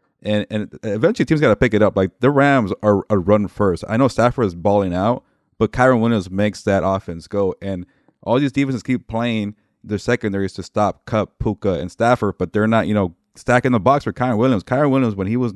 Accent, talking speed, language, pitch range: American, 230 wpm, English, 95-115 Hz